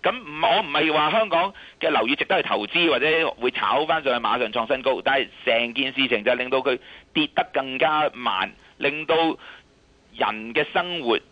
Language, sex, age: Chinese, male, 30-49